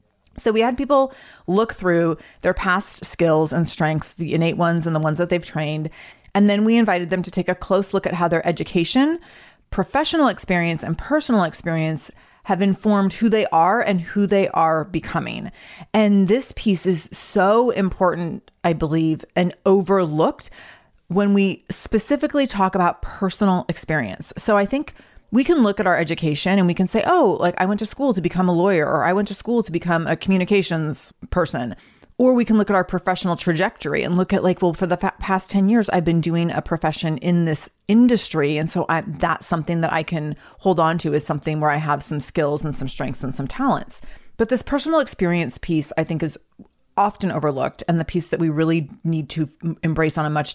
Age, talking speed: 30-49, 200 wpm